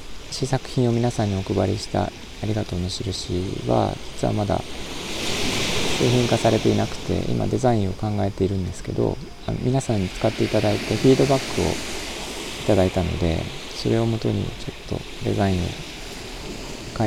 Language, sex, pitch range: Japanese, male, 95-130 Hz